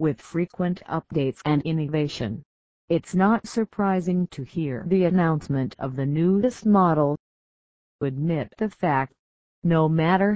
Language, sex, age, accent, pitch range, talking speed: English, female, 50-69, American, 135-180 Hz, 120 wpm